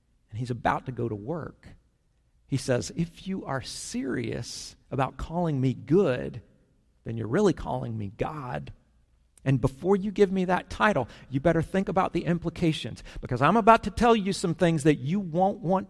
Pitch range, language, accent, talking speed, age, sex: 120-165 Hz, English, American, 180 wpm, 50-69, male